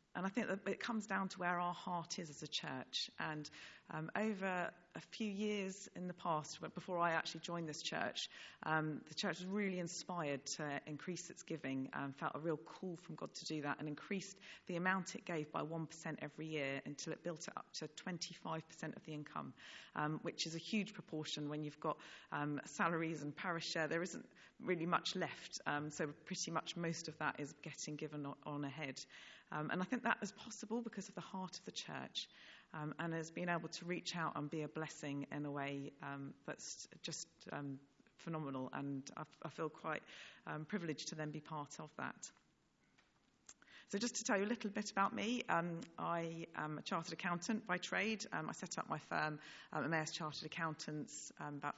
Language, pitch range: English, 150-190 Hz